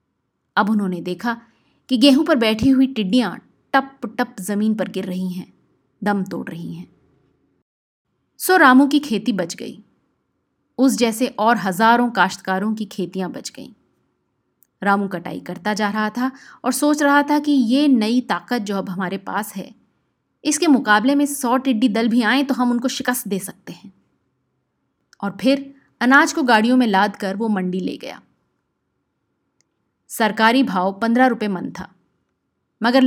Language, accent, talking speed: Hindi, native, 160 wpm